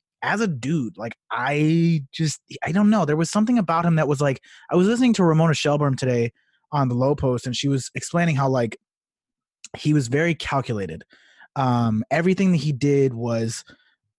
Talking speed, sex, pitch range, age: 180 wpm, male, 130-170 Hz, 20-39